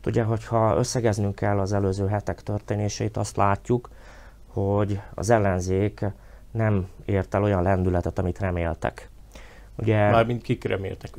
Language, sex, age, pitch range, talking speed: Hungarian, male, 30-49, 95-115 Hz, 125 wpm